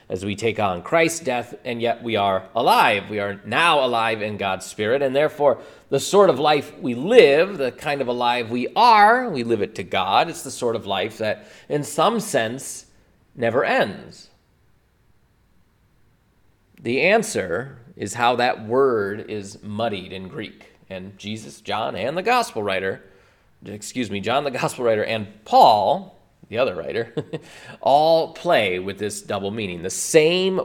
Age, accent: 30-49, American